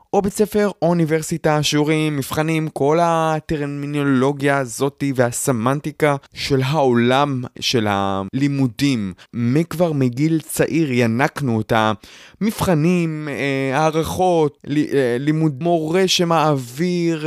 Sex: male